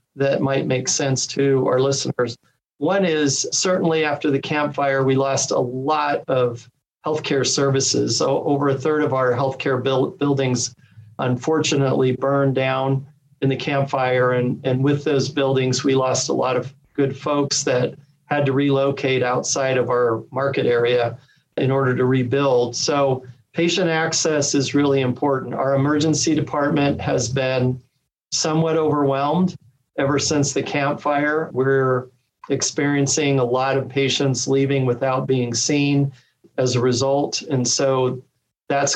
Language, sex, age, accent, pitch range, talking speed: English, male, 40-59, American, 130-145 Hz, 140 wpm